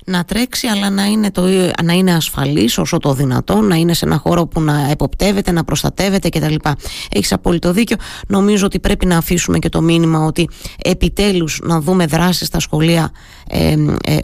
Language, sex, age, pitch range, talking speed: Greek, female, 20-39, 155-190 Hz, 175 wpm